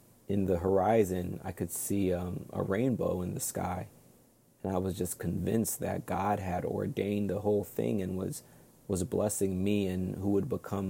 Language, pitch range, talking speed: English, 90-100 Hz, 180 wpm